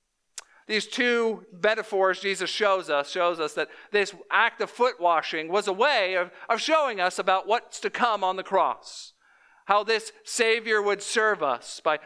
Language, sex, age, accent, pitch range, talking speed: English, male, 50-69, American, 160-215 Hz, 175 wpm